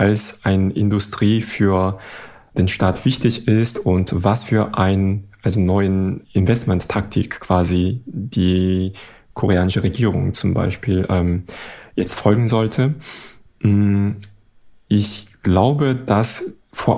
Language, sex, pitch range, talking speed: German, male, 95-115 Hz, 105 wpm